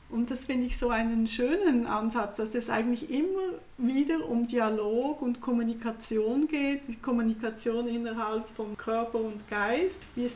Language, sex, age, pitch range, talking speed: German, female, 30-49, 230-275 Hz, 155 wpm